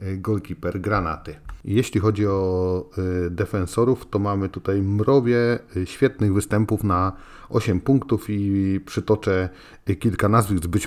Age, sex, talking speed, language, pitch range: 40-59, male, 115 wpm, Polish, 90-110 Hz